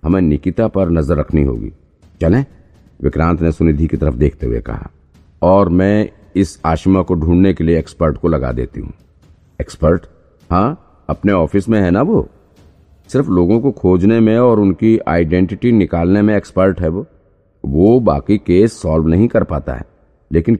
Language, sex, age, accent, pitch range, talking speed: Hindi, male, 50-69, native, 80-100 Hz, 170 wpm